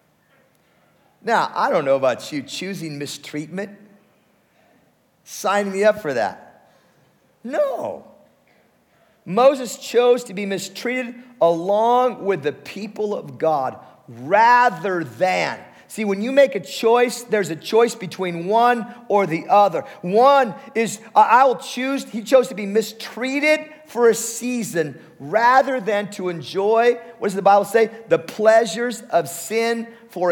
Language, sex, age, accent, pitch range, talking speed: English, male, 40-59, American, 190-250 Hz, 135 wpm